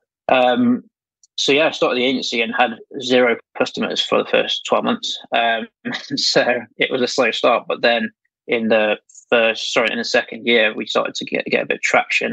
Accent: British